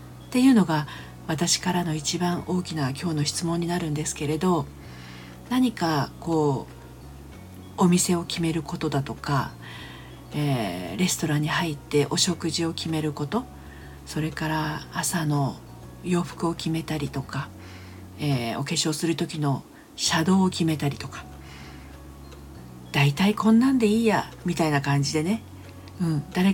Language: Japanese